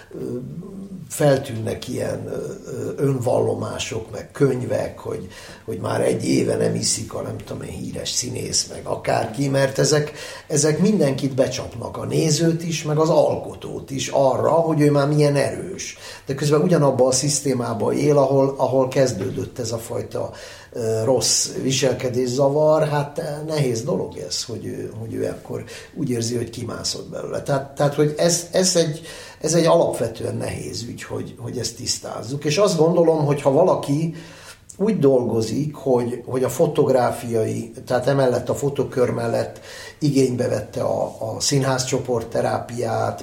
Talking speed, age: 140 wpm, 60-79